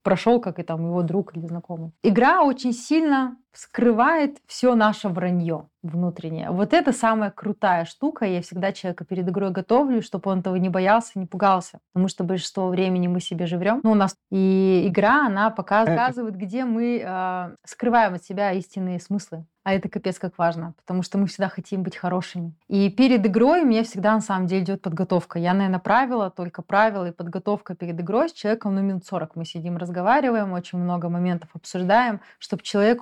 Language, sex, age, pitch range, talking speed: Russian, female, 30-49, 180-220 Hz, 185 wpm